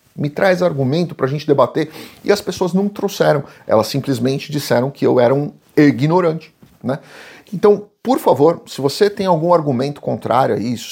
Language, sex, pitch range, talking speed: Portuguese, male, 140-190 Hz, 180 wpm